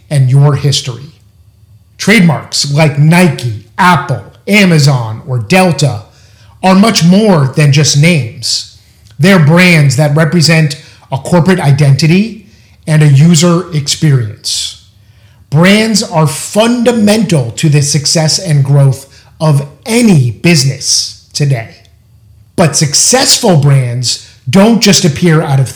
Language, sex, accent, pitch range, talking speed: English, male, American, 120-170 Hz, 110 wpm